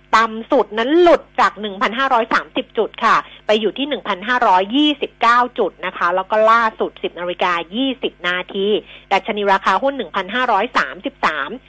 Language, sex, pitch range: Thai, female, 190-255 Hz